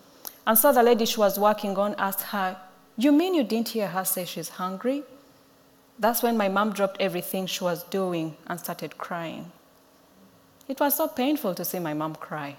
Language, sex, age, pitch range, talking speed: English, female, 30-49, 175-235 Hz, 190 wpm